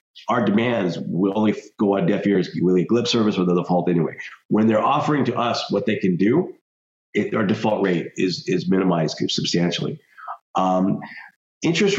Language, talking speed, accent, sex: English, 165 wpm, American, male